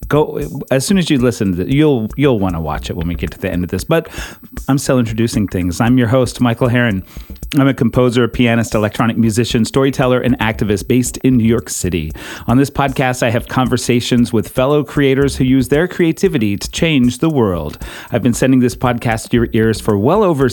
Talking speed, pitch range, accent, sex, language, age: 210 wpm, 110-140 Hz, American, male, English, 40-59